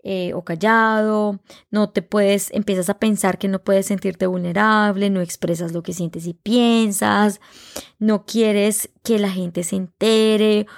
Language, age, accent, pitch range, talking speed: Spanish, 20-39, Colombian, 190-225 Hz, 155 wpm